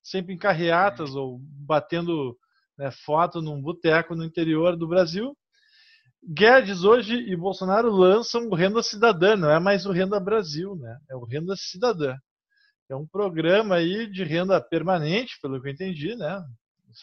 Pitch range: 165-230 Hz